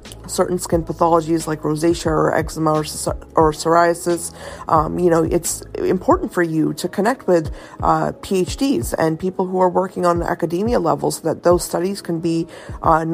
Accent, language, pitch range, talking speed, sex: American, English, 160-200 Hz, 165 wpm, female